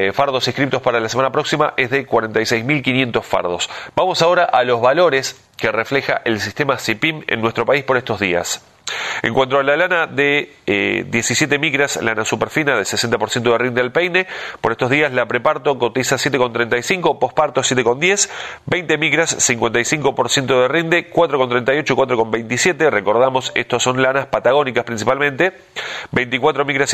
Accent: Argentinian